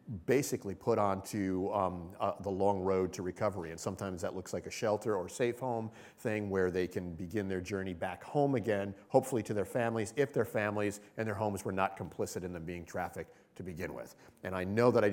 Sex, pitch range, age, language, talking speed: male, 100-125 Hz, 40-59, English, 215 wpm